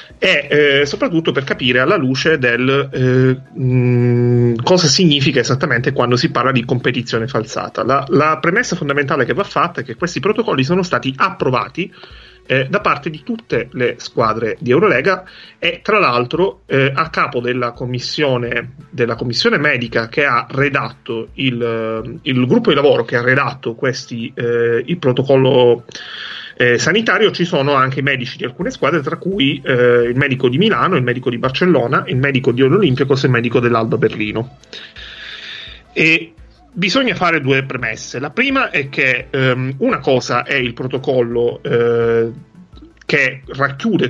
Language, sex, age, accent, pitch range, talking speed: Italian, male, 30-49, native, 120-160 Hz, 160 wpm